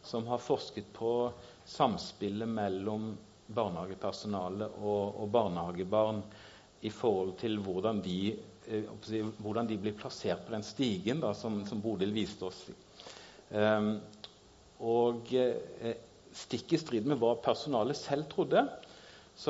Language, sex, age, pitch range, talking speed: English, male, 50-69, 105-120 Hz, 125 wpm